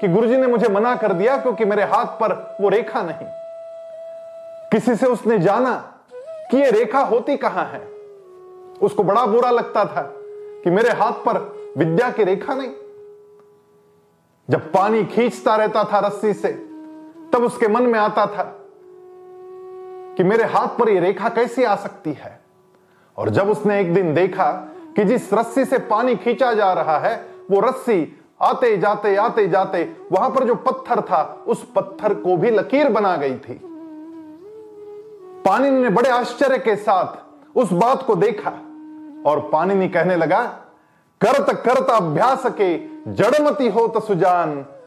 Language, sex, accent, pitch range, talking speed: English, male, Indian, 210-315 Hz, 140 wpm